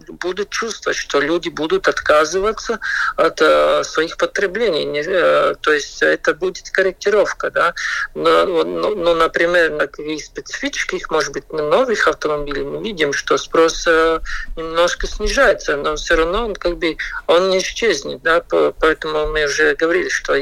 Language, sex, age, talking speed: Russian, male, 50-69, 150 wpm